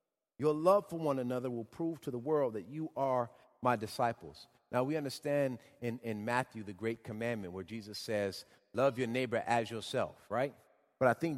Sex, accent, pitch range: male, American, 110-155 Hz